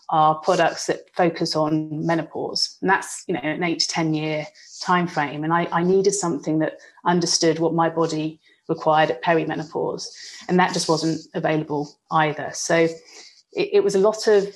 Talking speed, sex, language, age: 175 wpm, female, English, 30-49